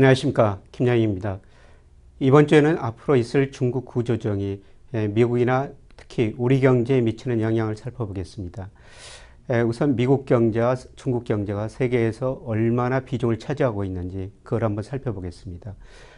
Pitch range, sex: 105-130 Hz, male